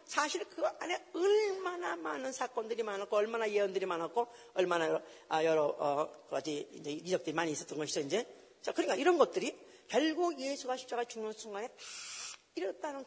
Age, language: 40-59, Korean